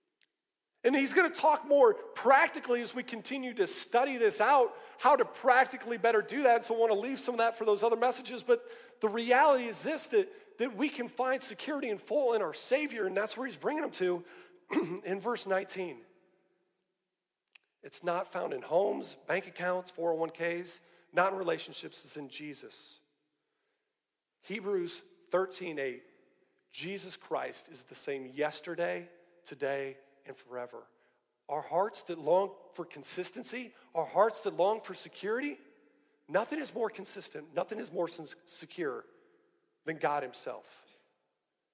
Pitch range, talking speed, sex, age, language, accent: 185-290 Hz, 150 wpm, male, 40-59, English, American